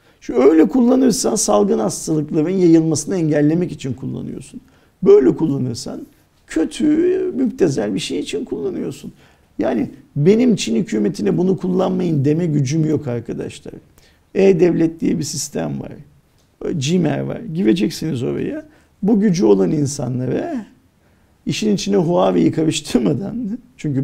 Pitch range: 130-190 Hz